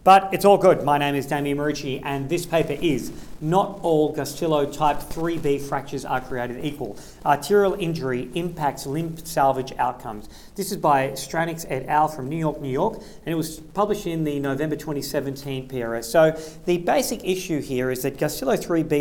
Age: 40-59